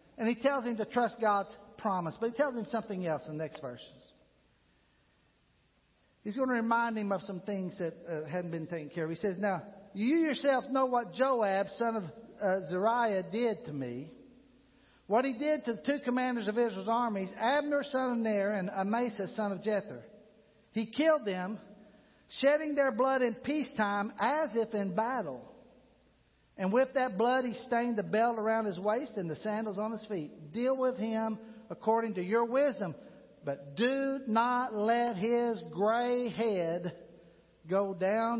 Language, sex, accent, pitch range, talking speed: English, male, American, 195-260 Hz, 175 wpm